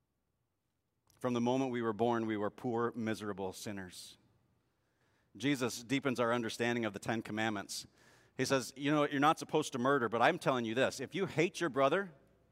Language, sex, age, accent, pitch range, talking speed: English, male, 40-59, American, 115-150 Hz, 180 wpm